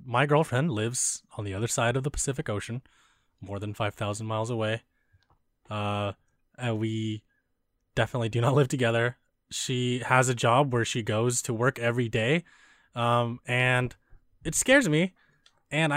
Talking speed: 155 wpm